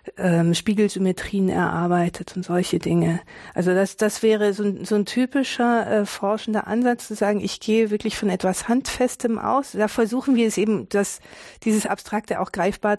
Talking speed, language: 165 wpm, German